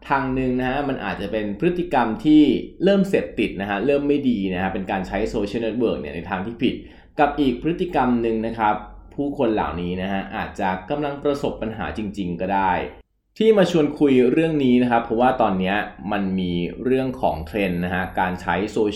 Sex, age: male, 20-39